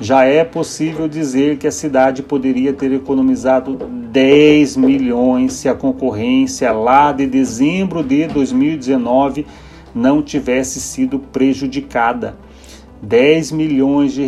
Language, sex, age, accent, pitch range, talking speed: Portuguese, male, 40-59, Brazilian, 130-160 Hz, 115 wpm